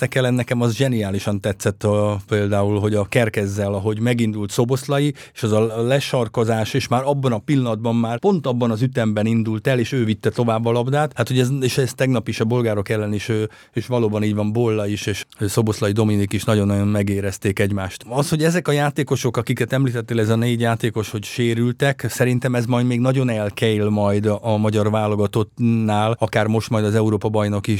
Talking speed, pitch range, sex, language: 190 wpm, 110-125 Hz, male, English